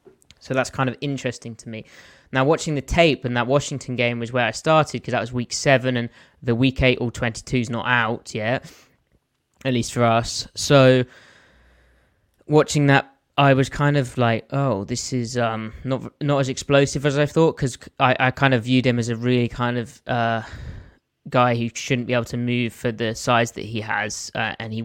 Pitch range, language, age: 110-130 Hz, English, 20-39